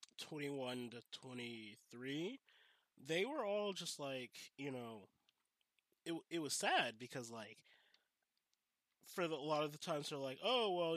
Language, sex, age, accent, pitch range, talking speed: English, male, 20-39, American, 125-155 Hz, 150 wpm